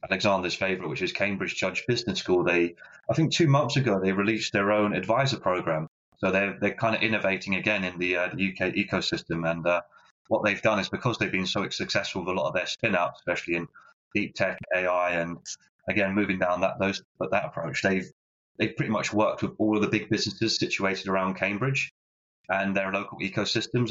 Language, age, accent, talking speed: English, 30-49, British, 210 wpm